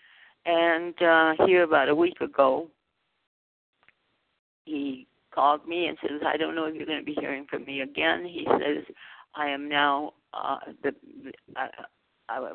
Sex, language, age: female, English, 50-69